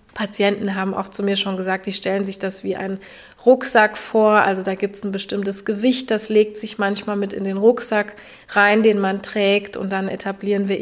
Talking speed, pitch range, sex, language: 210 wpm, 195-220 Hz, female, German